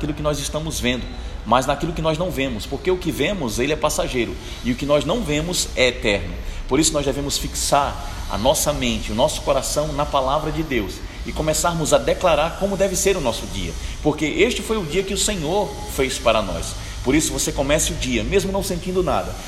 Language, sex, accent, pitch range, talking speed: Portuguese, male, Brazilian, 135-185 Hz, 220 wpm